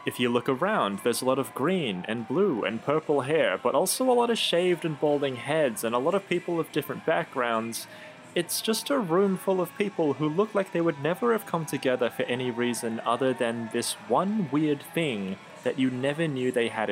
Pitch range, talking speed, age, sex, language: 120-170 Hz, 220 wpm, 20-39, male, English